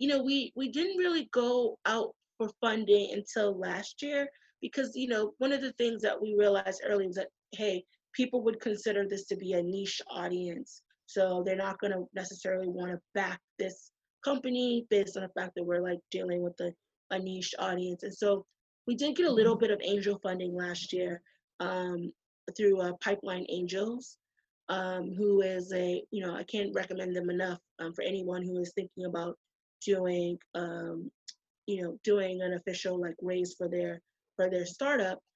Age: 20-39